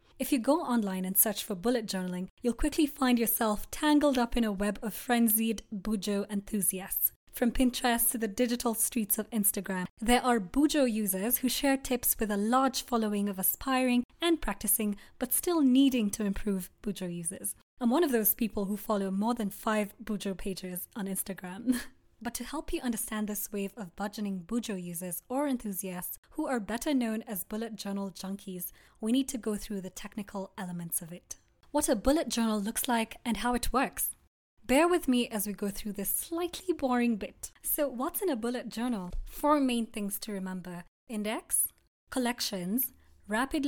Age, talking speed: 20-39, 180 wpm